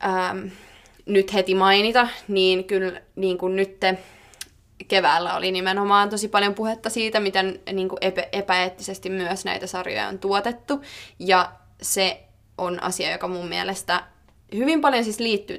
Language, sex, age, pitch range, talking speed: Finnish, female, 20-39, 185-200 Hz, 140 wpm